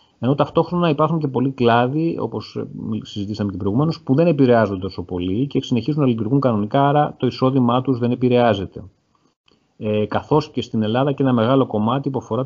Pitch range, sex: 95-125 Hz, male